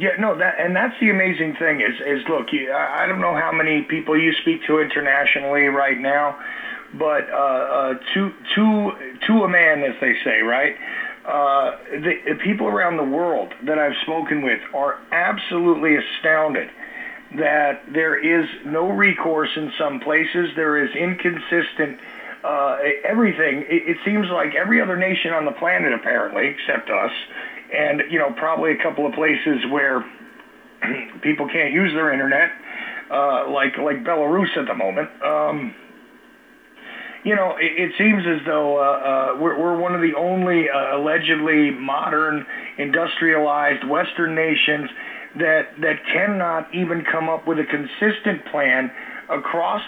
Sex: male